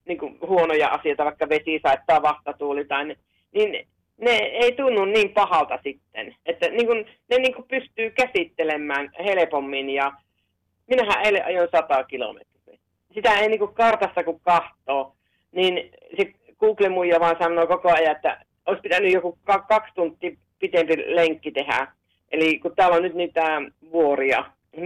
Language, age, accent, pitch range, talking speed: Finnish, 30-49, native, 145-195 Hz, 145 wpm